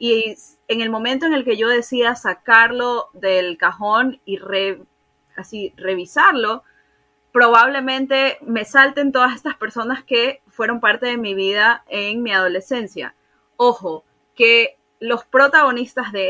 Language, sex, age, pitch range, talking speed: Spanish, female, 20-39, 220-275 Hz, 130 wpm